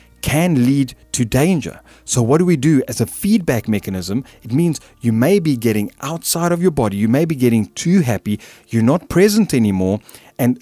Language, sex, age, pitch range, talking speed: English, male, 30-49, 105-145 Hz, 190 wpm